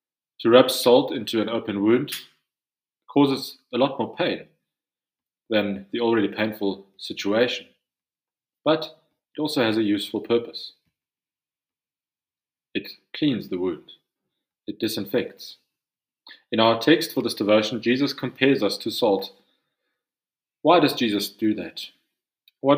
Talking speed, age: 125 wpm, 30-49